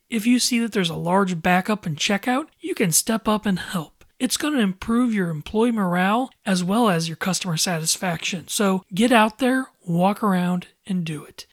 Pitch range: 180-235 Hz